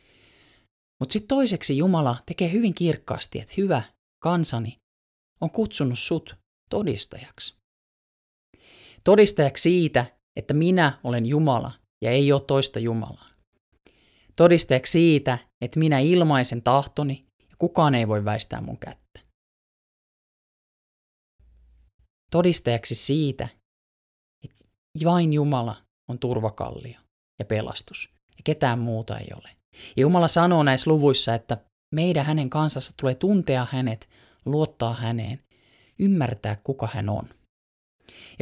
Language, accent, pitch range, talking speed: Finnish, native, 115-155 Hz, 110 wpm